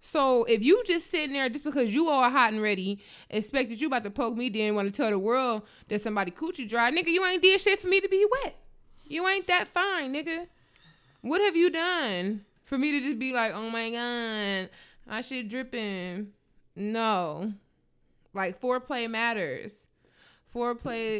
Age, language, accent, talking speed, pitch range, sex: 20-39, English, American, 185 wpm, 205-265 Hz, female